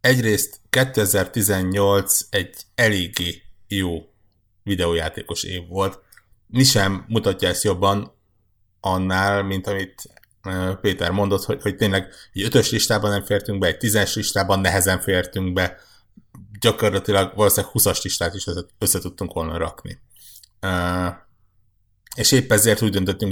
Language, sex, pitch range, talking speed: Hungarian, male, 95-110 Hz, 115 wpm